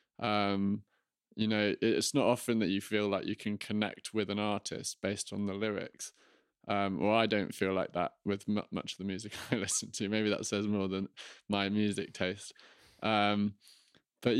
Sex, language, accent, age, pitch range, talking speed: male, English, British, 20-39, 105-125 Hz, 190 wpm